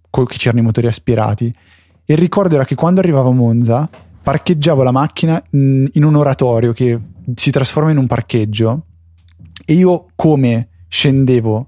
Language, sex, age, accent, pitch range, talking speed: Italian, male, 20-39, native, 115-150 Hz, 155 wpm